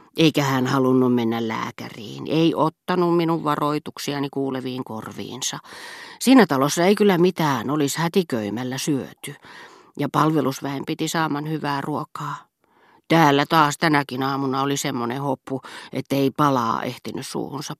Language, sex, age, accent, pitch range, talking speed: Finnish, female, 40-59, native, 130-160 Hz, 120 wpm